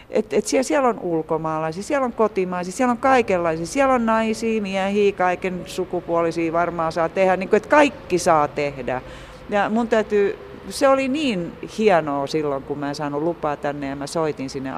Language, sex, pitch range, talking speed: Finnish, female, 155-225 Hz, 180 wpm